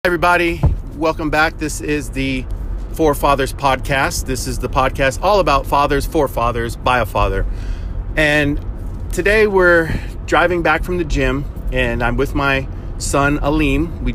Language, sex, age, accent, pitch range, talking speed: English, male, 40-59, American, 100-130 Hz, 145 wpm